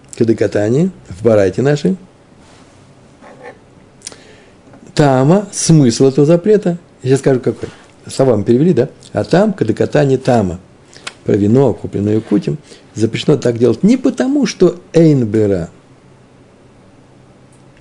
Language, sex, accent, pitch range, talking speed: Russian, male, native, 115-150 Hz, 100 wpm